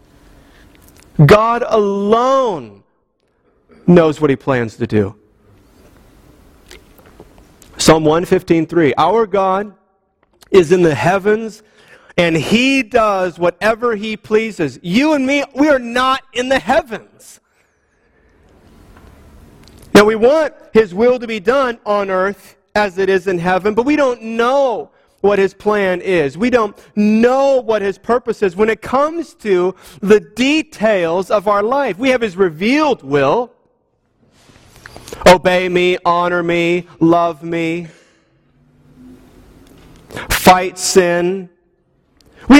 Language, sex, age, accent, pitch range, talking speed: English, male, 40-59, American, 175-235 Hz, 120 wpm